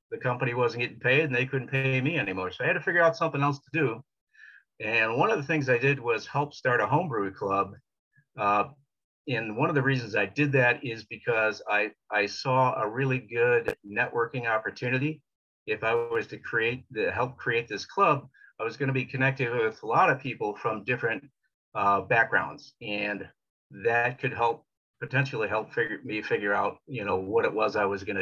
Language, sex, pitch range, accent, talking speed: English, male, 110-140 Hz, American, 205 wpm